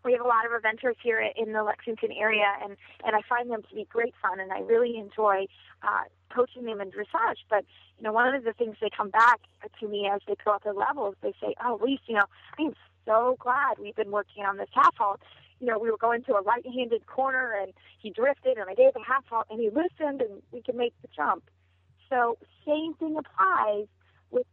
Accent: American